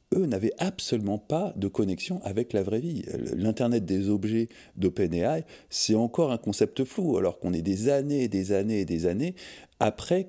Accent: French